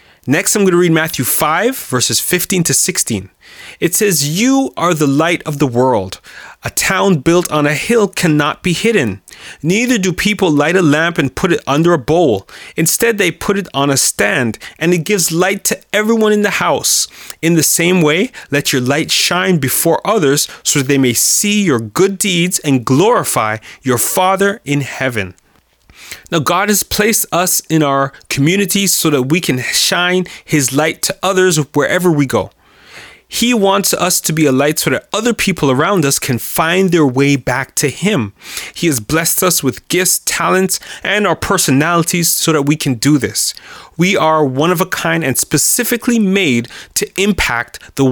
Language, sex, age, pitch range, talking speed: English, male, 30-49, 140-190 Hz, 185 wpm